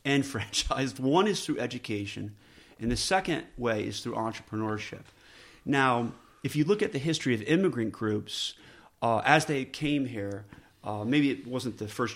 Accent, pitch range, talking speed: American, 110-145 Hz, 165 wpm